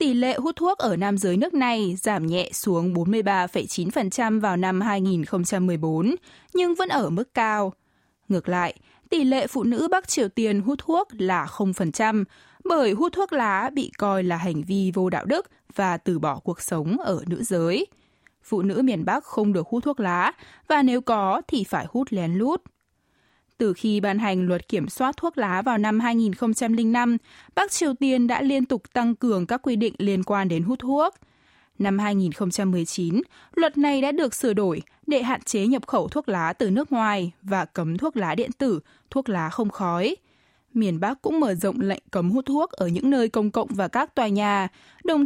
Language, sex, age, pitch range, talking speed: Vietnamese, female, 10-29, 190-260 Hz, 195 wpm